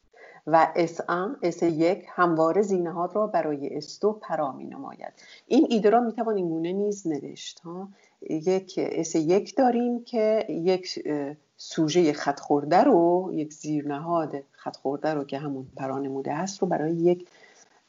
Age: 50-69